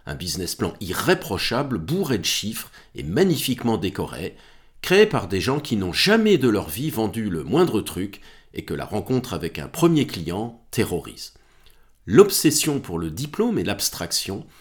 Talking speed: 160 wpm